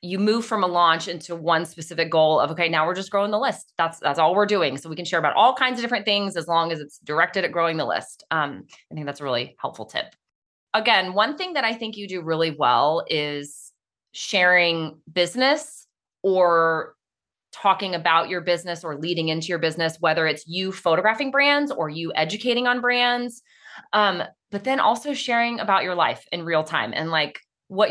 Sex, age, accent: female, 20-39, American